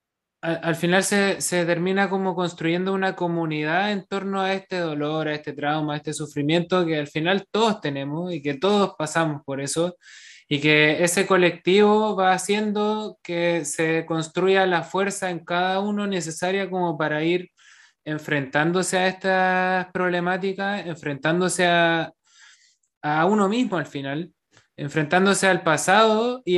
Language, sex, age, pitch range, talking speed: English, male, 20-39, 155-190 Hz, 145 wpm